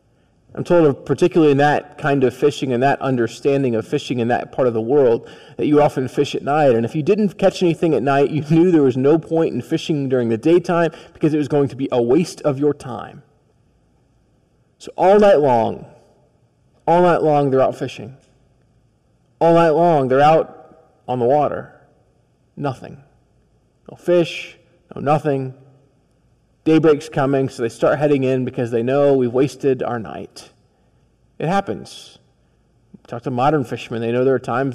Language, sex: English, male